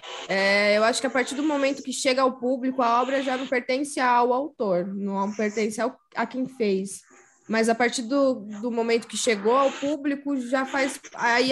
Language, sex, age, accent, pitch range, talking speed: Portuguese, female, 20-39, Brazilian, 210-265 Hz, 200 wpm